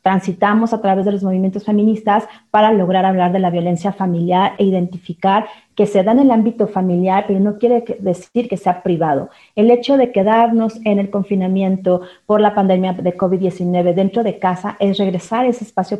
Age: 40-59